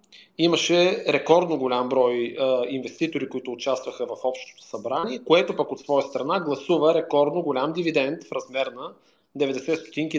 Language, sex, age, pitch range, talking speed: Bulgarian, male, 30-49, 130-155 Hz, 145 wpm